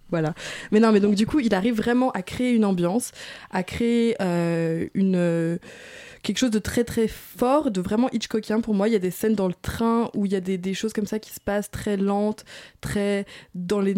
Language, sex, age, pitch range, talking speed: French, female, 20-39, 190-235 Hz, 235 wpm